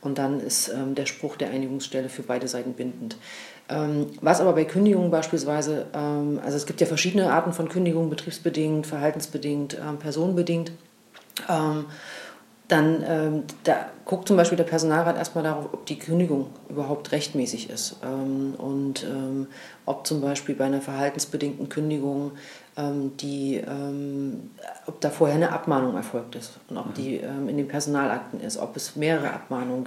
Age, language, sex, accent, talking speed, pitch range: 40-59, German, female, German, 160 wpm, 140-155 Hz